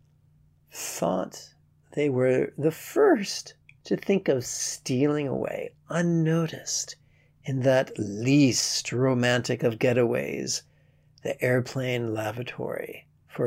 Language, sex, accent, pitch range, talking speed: English, male, American, 115-145 Hz, 95 wpm